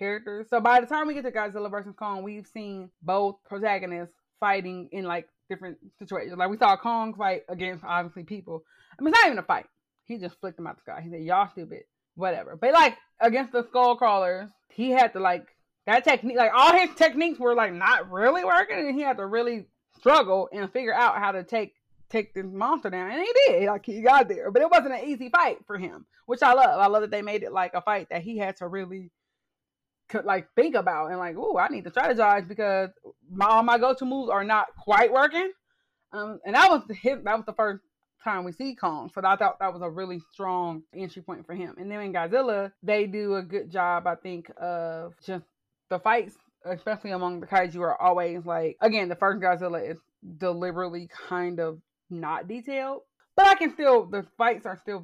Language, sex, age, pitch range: English, female, 20-39, 180-245 Hz